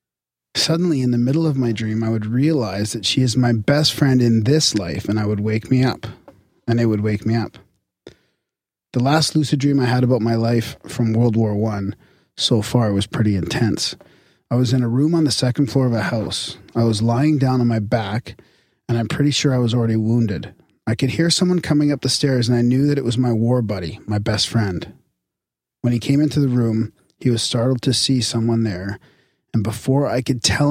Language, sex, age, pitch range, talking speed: English, male, 30-49, 115-135 Hz, 225 wpm